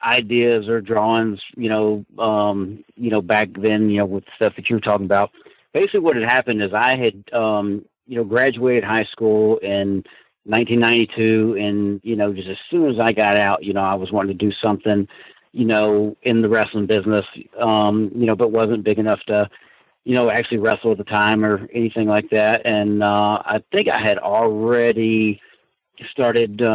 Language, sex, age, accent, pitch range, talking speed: English, male, 40-59, American, 100-115 Hz, 190 wpm